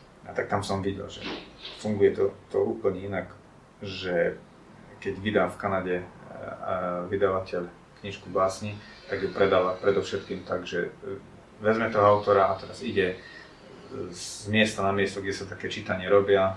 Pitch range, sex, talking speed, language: 95-105 Hz, male, 145 wpm, Slovak